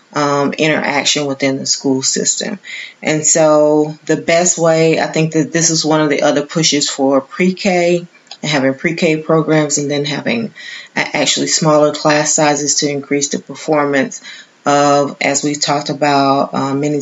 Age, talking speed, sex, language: 30-49, 160 wpm, female, English